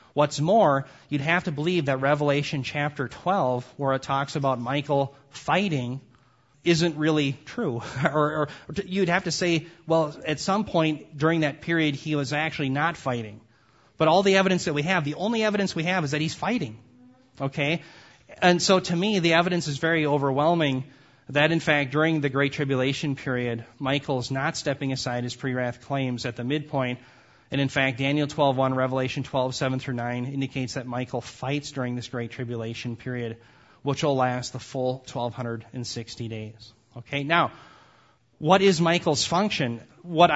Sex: male